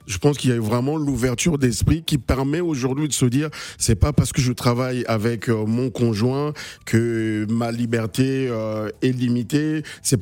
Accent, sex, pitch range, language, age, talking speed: French, male, 120-155 Hz, French, 50-69, 170 wpm